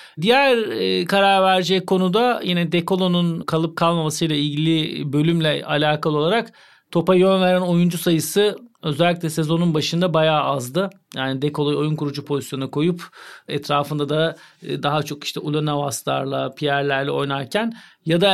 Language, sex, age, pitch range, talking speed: Turkish, male, 40-59, 150-185 Hz, 135 wpm